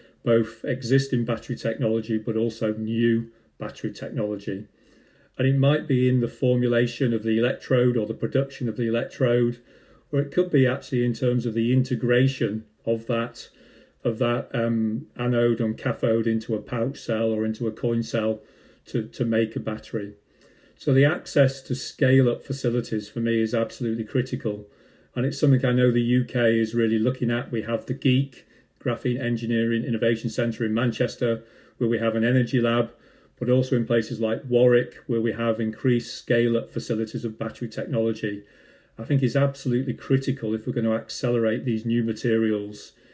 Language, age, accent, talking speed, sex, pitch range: English, 40-59, British, 170 wpm, male, 115-125 Hz